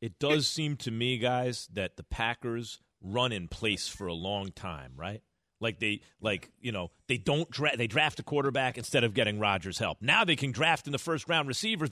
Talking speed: 210 wpm